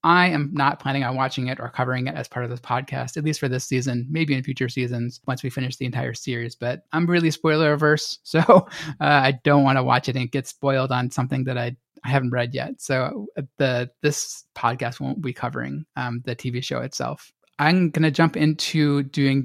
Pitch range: 130-155 Hz